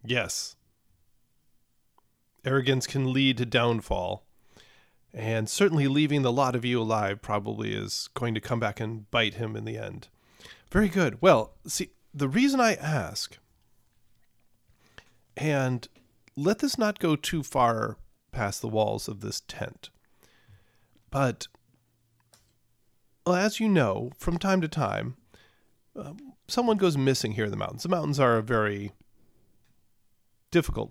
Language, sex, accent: English, male, American